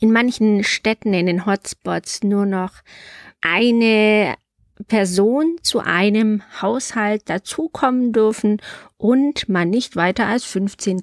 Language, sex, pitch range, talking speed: German, female, 200-255 Hz, 115 wpm